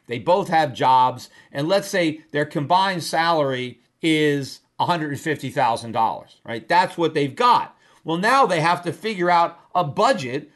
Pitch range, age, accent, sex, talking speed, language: 150-180 Hz, 50-69, American, male, 150 wpm, English